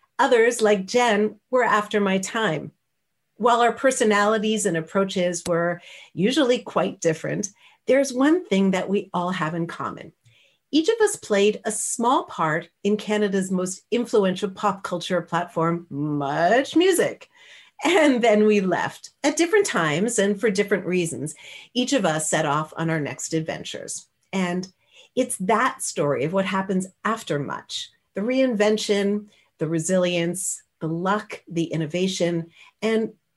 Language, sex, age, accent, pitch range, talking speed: English, female, 50-69, American, 175-235 Hz, 140 wpm